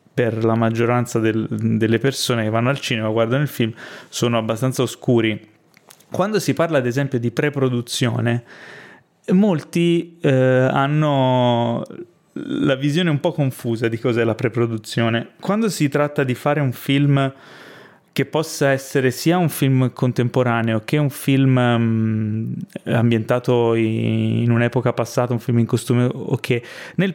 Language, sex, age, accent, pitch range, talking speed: Italian, male, 30-49, native, 115-140 Hz, 145 wpm